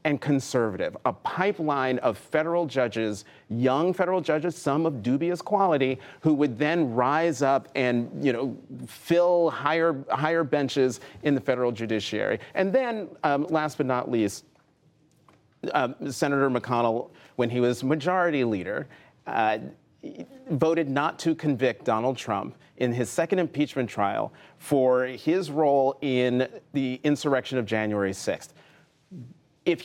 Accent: American